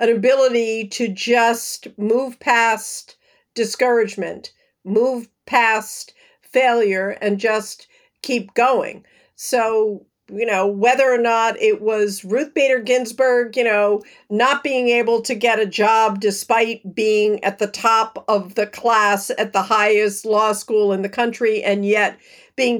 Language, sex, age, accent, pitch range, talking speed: English, female, 50-69, American, 215-260 Hz, 140 wpm